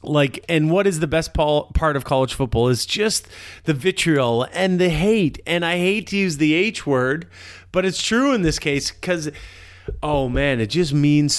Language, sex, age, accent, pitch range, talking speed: English, male, 30-49, American, 115-160 Hz, 195 wpm